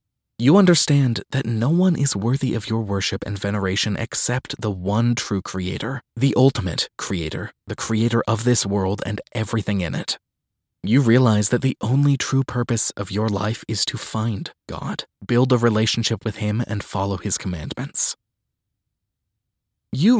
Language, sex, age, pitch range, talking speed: English, male, 20-39, 100-130 Hz, 155 wpm